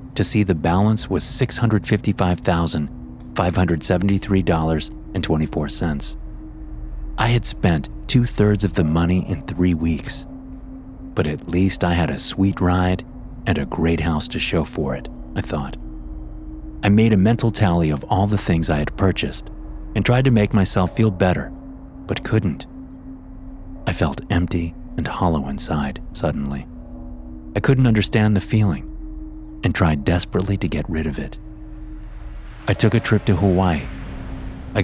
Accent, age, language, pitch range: American, 30-49, English, 80-105 Hz